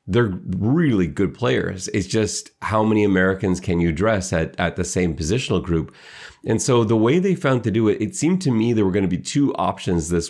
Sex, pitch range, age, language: male, 85-110 Hz, 30-49, English